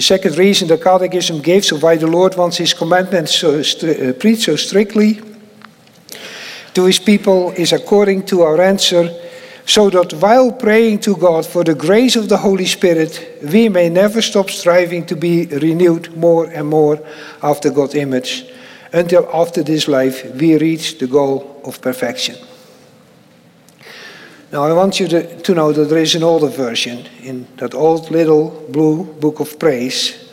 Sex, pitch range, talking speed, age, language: male, 155-195 Hz, 165 wpm, 50-69, English